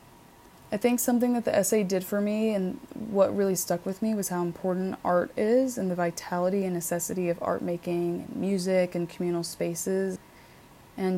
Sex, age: female, 20-39